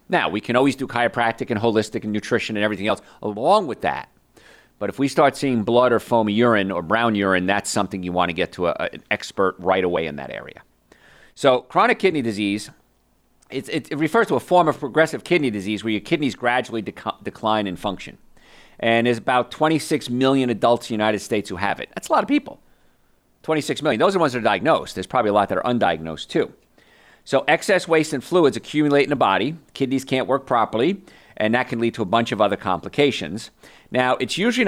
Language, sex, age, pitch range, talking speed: English, male, 40-59, 110-140 Hz, 215 wpm